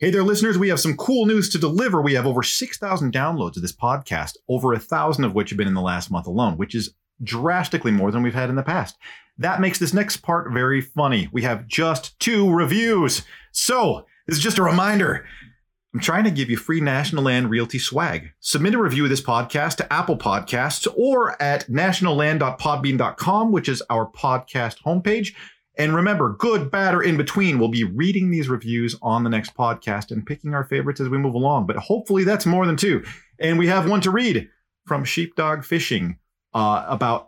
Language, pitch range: English, 120-185 Hz